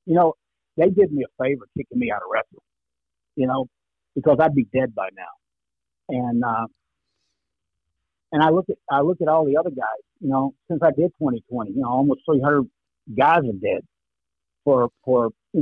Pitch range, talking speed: 120-155 Hz, 200 wpm